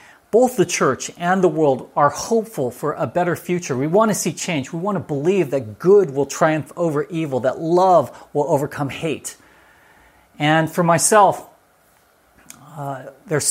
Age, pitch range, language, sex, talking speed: 40-59, 125-165 Hz, English, male, 165 wpm